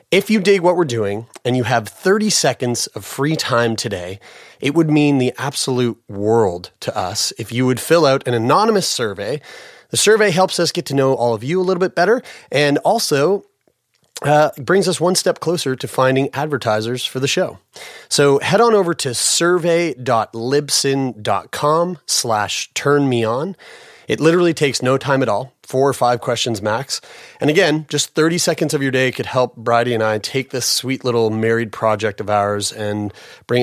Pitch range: 115-155 Hz